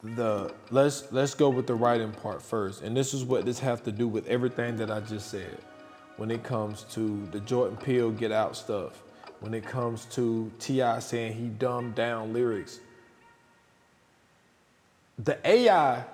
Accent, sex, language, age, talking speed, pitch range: American, male, English, 20-39, 165 wpm, 115-150 Hz